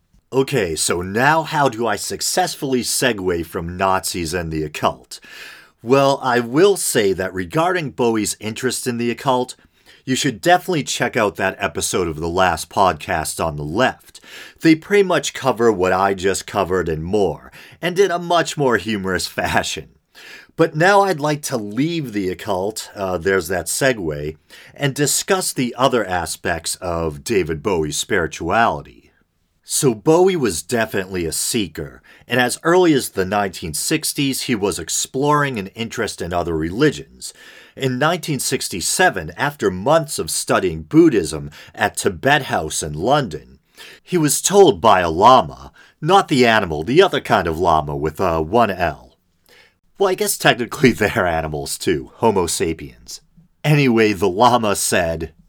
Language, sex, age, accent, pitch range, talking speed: English, male, 40-59, American, 95-150 Hz, 150 wpm